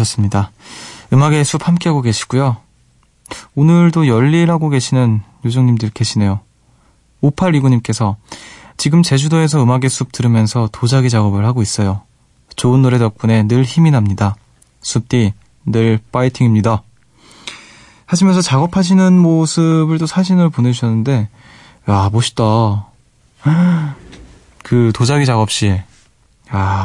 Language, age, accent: Korean, 20-39, native